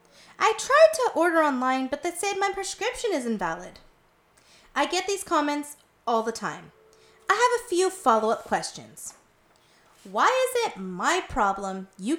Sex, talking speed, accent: female, 155 wpm, American